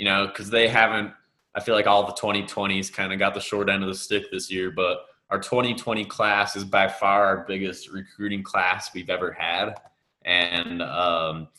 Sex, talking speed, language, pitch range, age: male, 195 wpm, English, 95-110 Hz, 20-39